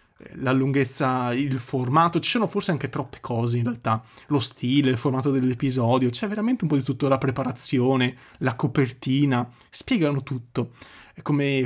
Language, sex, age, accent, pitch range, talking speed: Italian, male, 20-39, native, 130-165 Hz, 155 wpm